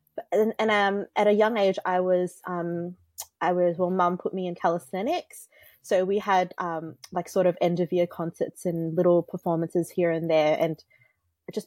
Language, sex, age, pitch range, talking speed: English, female, 20-39, 165-195 Hz, 190 wpm